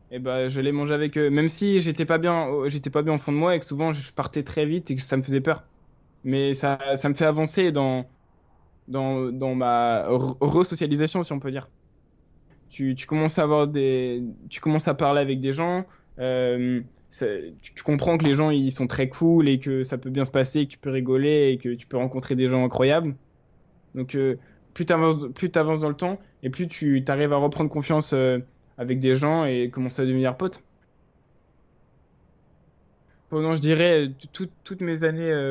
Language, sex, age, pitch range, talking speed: French, male, 20-39, 130-155 Hz, 210 wpm